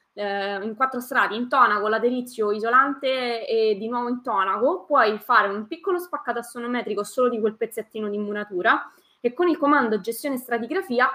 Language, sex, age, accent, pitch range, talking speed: Italian, female, 20-39, native, 210-255 Hz, 160 wpm